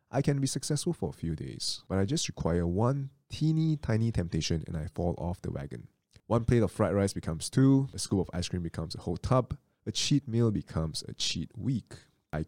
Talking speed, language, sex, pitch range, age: 220 wpm, English, male, 85-110 Hz, 20-39